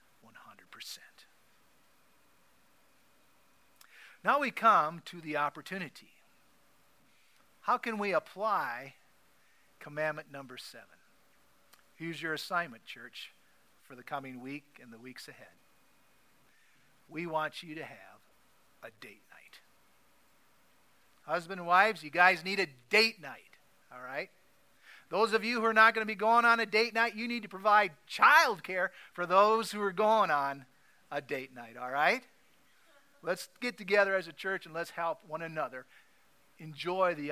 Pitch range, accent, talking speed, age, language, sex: 145-200 Hz, American, 145 wpm, 50-69, English, male